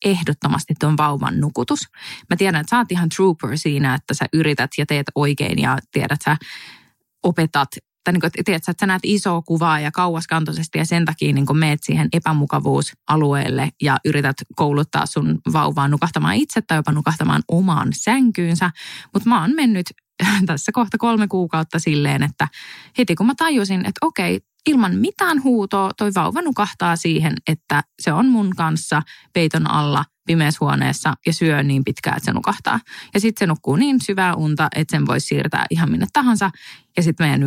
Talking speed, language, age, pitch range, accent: 175 wpm, Finnish, 20-39, 155-230 Hz, native